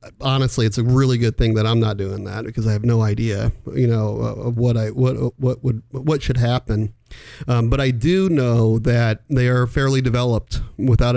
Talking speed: 205 wpm